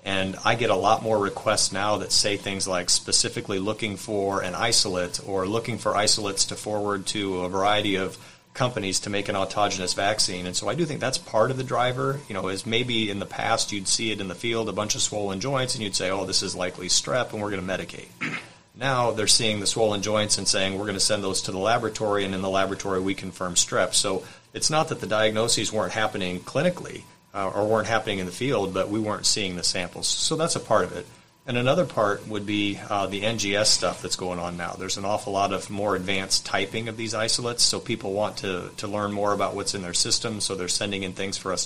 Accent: American